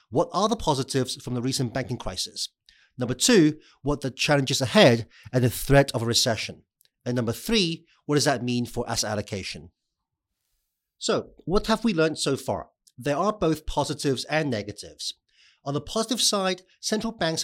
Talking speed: 175 wpm